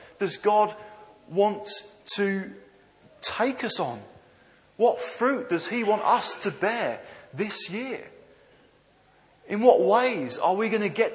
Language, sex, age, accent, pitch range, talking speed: English, male, 30-49, British, 185-235 Hz, 135 wpm